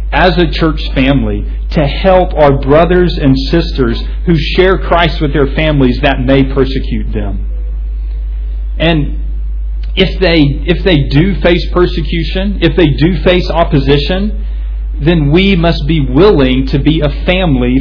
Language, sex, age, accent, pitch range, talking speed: English, male, 40-59, American, 110-170 Hz, 140 wpm